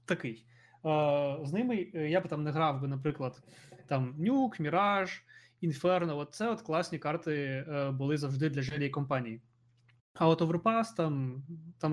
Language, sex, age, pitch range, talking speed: Ukrainian, male, 20-39, 140-170 Hz, 155 wpm